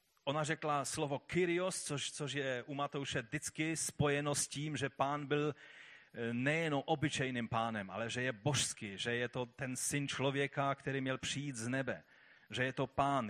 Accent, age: native, 30-49